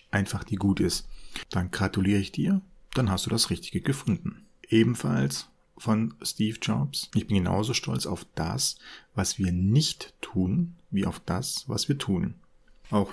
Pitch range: 95-115 Hz